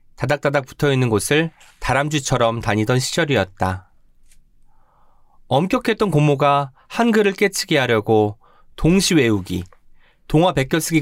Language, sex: Korean, male